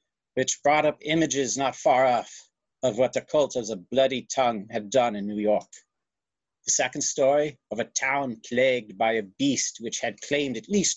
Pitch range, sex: 130-175 Hz, male